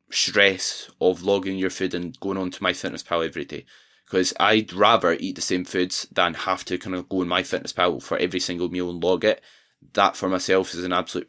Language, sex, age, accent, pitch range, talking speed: English, male, 10-29, British, 95-110 Hz, 230 wpm